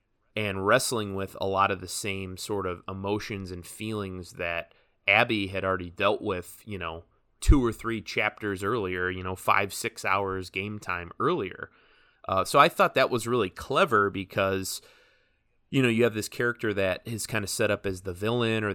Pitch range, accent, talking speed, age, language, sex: 95-110 Hz, American, 190 wpm, 30-49, English, male